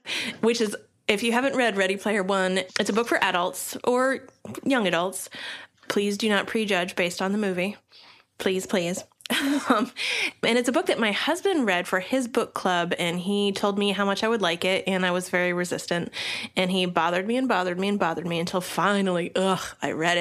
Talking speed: 210 wpm